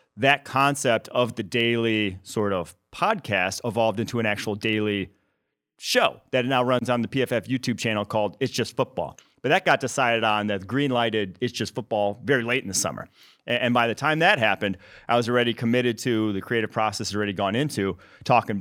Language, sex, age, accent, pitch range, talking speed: English, male, 30-49, American, 105-130 Hz, 195 wpm